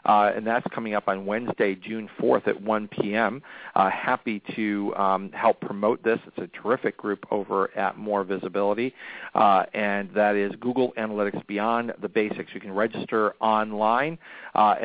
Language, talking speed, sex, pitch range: English, 160 wpm, male, 100-115 Hz